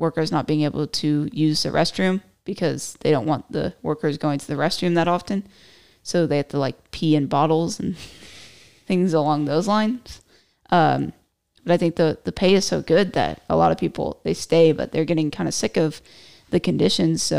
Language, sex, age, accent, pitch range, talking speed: English, female, 20-39, American, 145-170 Hz, 205 wpm